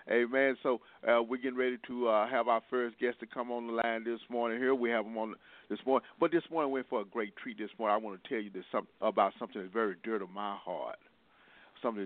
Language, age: English, 50-69